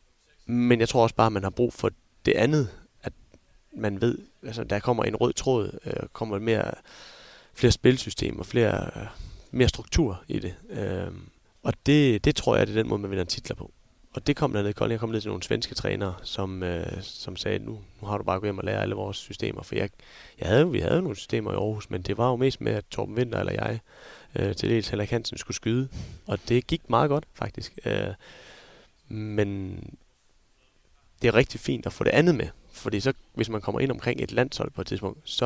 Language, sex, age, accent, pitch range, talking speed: Danish, male, 30-49, native, 100-120 Hz, 225 wpm